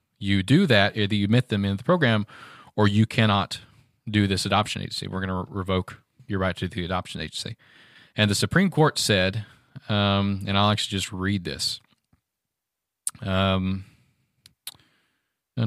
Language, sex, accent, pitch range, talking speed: English, male, American, 95-110 Hz, 155 wpm